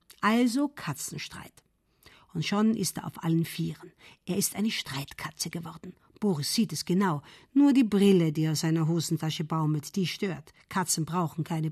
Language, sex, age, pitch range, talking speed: German, female, 50-69, 160-215 Hz, 165 wpm